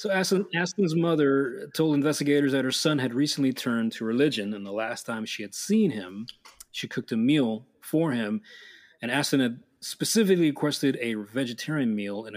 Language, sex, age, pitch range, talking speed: English, male, 30-49, 115-155 Hz, 175 wpm